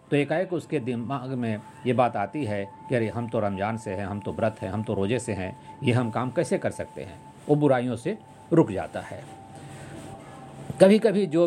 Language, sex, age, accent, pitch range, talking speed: Hindi, male, 50-69, native, 115-155 Hz, 215 wpm